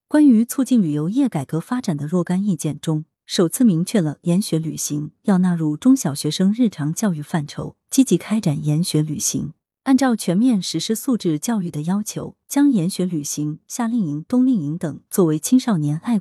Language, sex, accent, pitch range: Chinese, female, native, 155-225 Hz